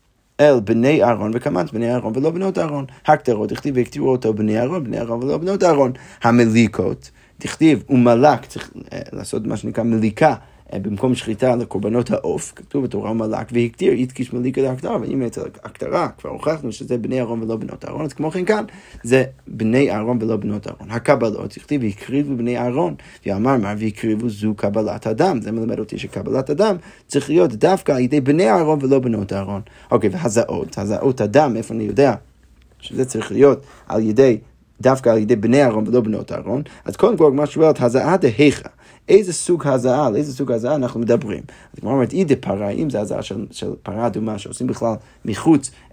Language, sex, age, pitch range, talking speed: Hebrew, male, 30-49, 110-140 Hz, 130 wpm